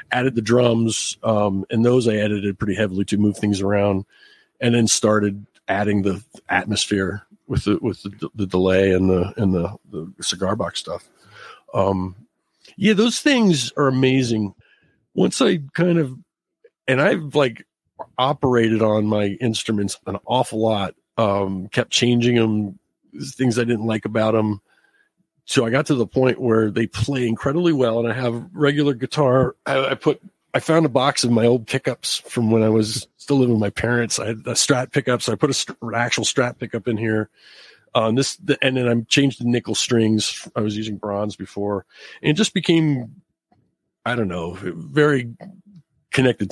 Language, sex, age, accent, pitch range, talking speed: English, male, 50-69, American, 105-130 Hz, 180 wpm